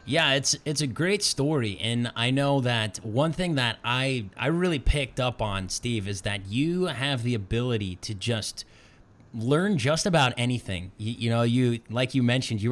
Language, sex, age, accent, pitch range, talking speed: English, male, 30-49, American, 110-135 Hz, 190 wpm